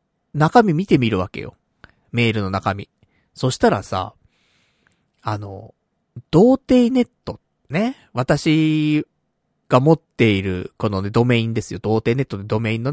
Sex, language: male, Japanese